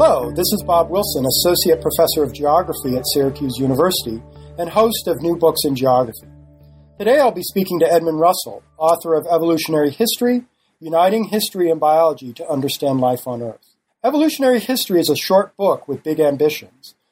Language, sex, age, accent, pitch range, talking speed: English, male, 40-59, American, 150-190 Hz, 170 wpm